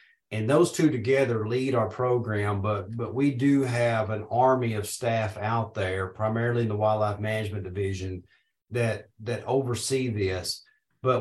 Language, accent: English, American